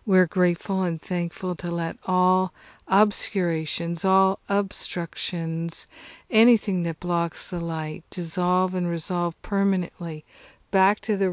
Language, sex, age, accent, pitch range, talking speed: English, female, 60-79, American, 170-190 Hz, 115 wpm